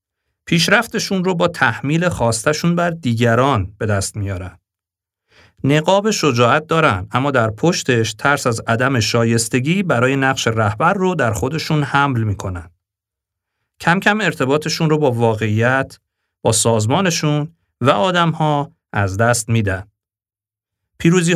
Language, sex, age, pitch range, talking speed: Persian, male, 50-69, 105-155 Hz, 120 wpm